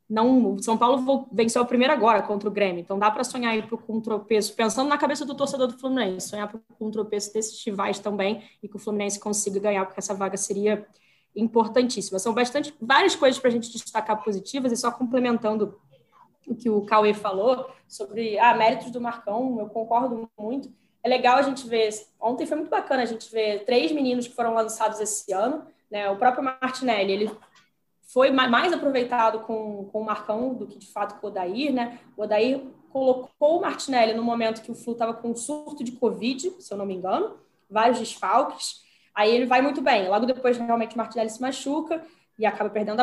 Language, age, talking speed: Portuguese, 10-29, 205 wpm